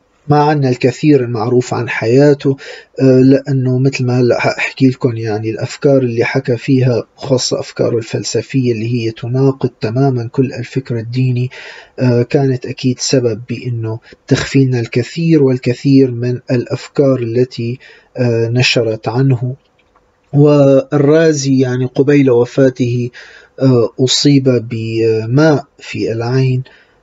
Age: 40-59